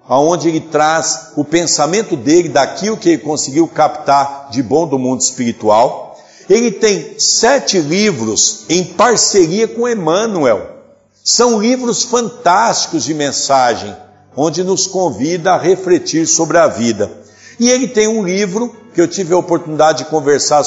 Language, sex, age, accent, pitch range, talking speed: Portuguese, male, 60-79, Brazilian, 135-185 Hz, 140 wpm